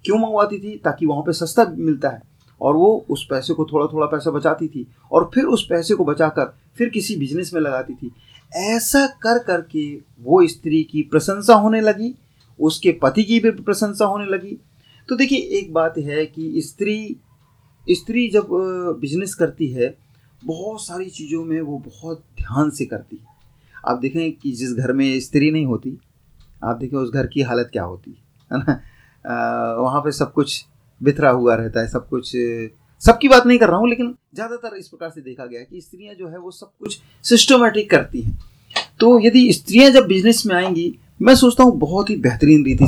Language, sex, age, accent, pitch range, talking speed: Hindi, male, 30-49, native, 135-210 Hz, 195 wpm